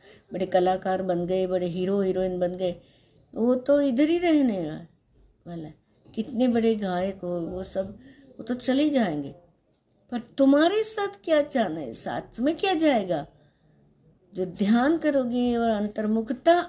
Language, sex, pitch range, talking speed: Hindi, female, 160-245 Hz, 140 wpm